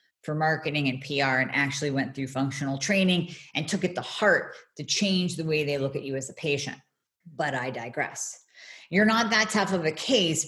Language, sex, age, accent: English, female, 40-59, American